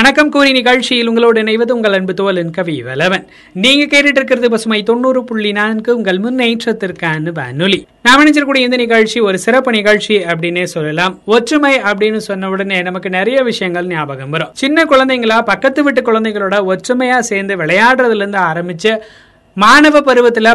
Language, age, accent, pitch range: Tamil, 20-39, native, 185-240 Hz